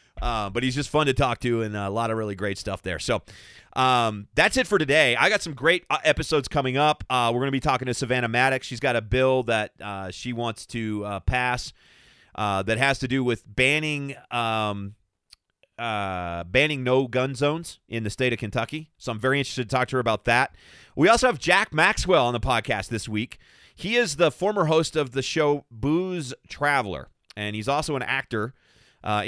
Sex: male